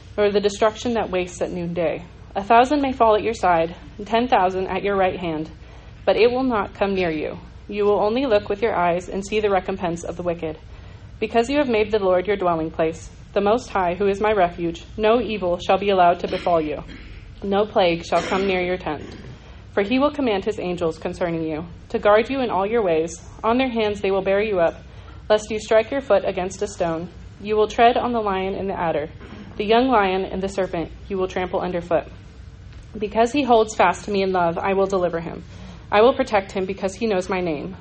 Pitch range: 175-215 Hz